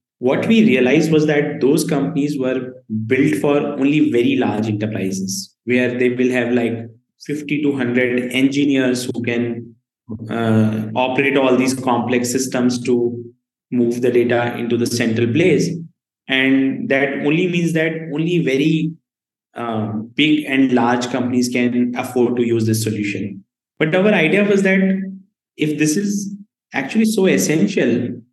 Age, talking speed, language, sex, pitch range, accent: 20-39, 145 wpm, English, male, 120-150 Hz, Indian